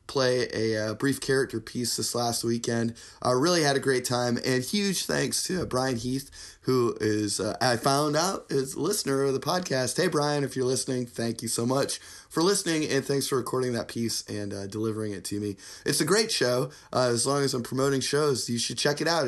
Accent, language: American, English